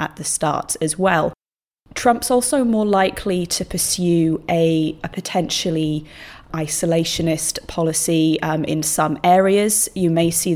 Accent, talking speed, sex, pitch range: British, 130 wpm, female, 155-185 Hz